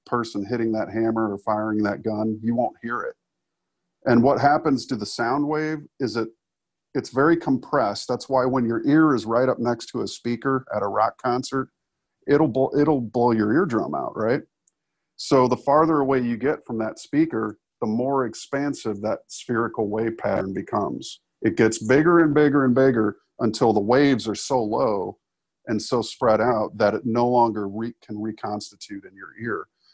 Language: English